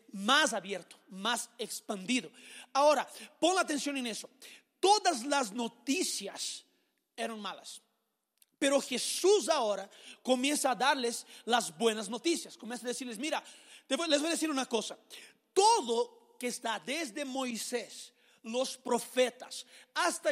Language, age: Spanish, 40-59